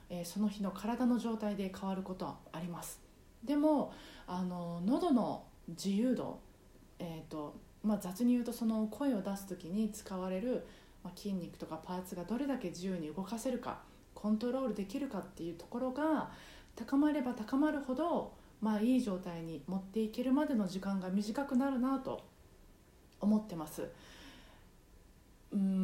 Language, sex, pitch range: Japanese, female, 185-240 Hz